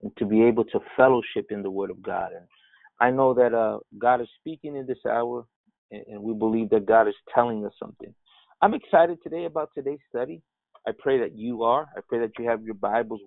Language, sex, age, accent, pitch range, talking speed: English, male, 30-49, American, 105-130 Hz, 225 wpm